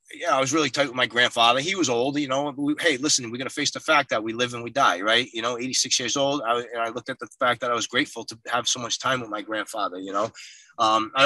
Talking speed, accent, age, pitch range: 300 wpm, American, 30-49, 115-155 Hz